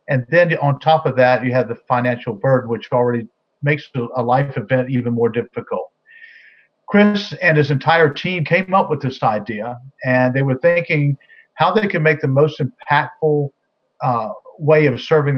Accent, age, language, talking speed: American, 50-69, English, 175 wpm